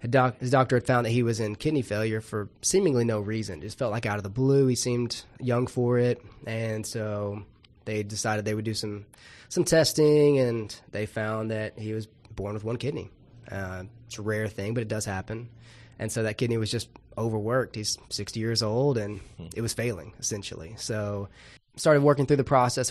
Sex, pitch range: male, 105-125 Hz